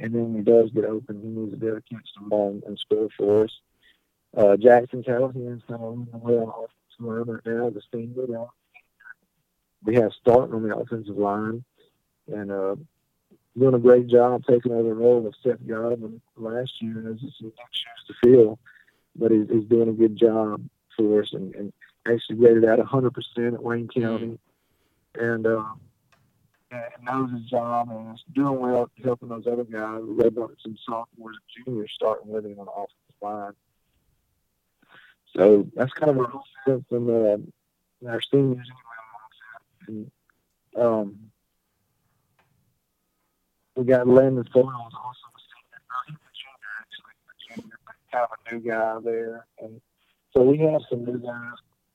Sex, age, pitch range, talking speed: male, 50-69, 110-125 Hz, 165 wpm